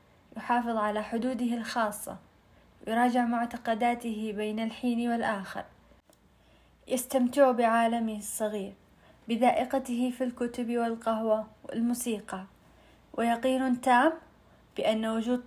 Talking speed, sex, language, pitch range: 80 wpm, female, Arabic, 215-240 Hz